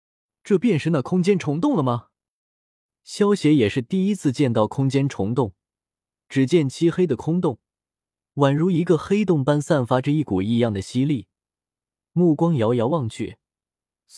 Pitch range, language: 120-180 Hz, Chinese